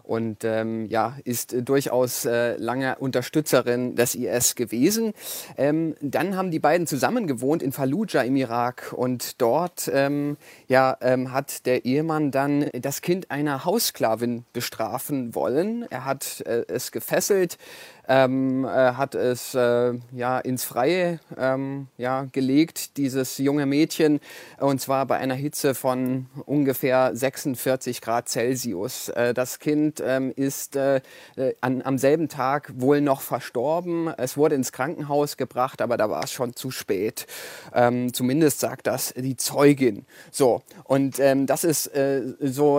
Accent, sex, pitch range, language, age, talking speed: German, male, 130-150 Hz, German, 30-49, 145 wpm